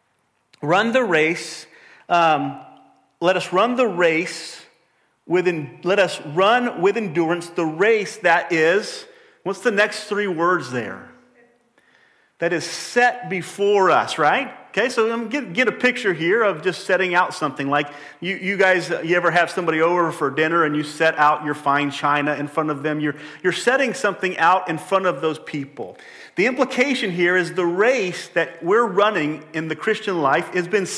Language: English